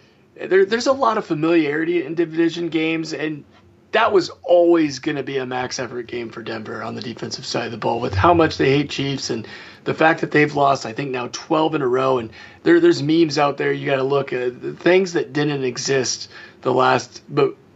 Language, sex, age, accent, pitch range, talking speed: English, male, 30-49, American, 130-160 Hz, 225 wpm